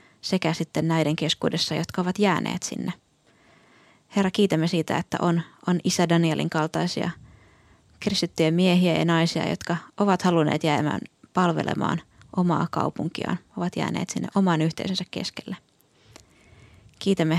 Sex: female